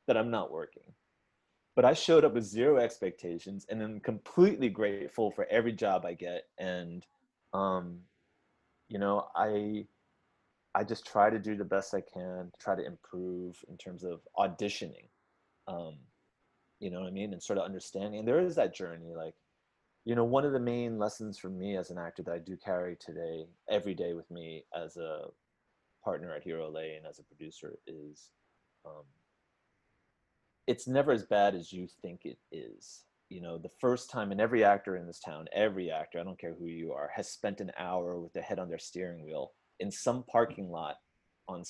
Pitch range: 90-110 Hz